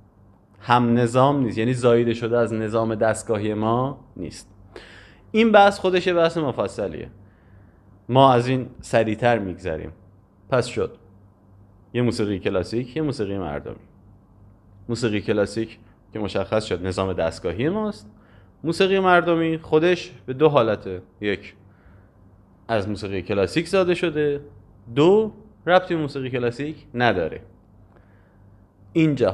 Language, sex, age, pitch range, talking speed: Persian, male, 30-49, 100-130 Hz, 110 wpm